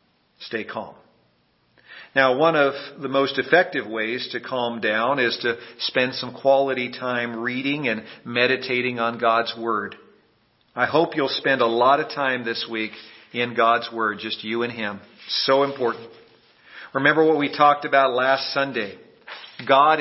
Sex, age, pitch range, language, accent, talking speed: male, 50-69, 120-160 Hz, English, American, 155 wpm